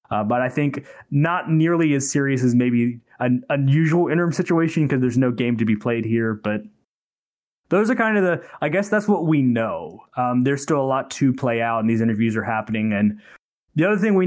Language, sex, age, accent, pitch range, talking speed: English, male, 20-39, American, 125-160 Hz, 220 wpm